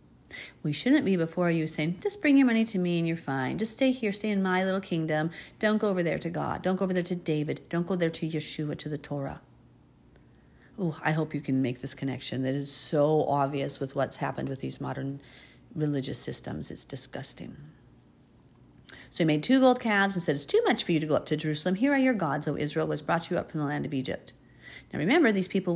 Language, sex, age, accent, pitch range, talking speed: English, female, 40-59, American, 145-205 Hz, 240 wpm